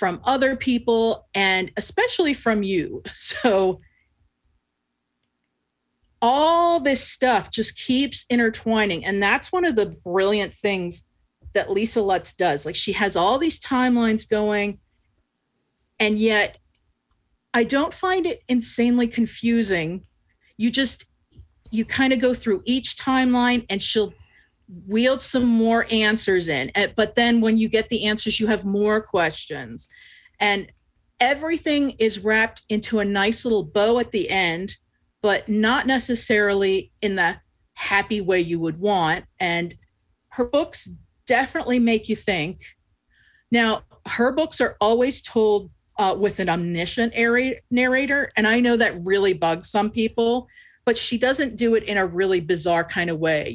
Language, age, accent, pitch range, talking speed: English, 40-59, American, 190-245 Hz, 145 wpm